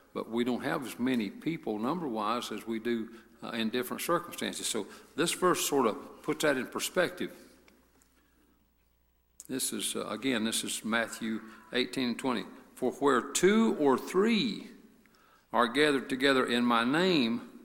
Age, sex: 60-79, male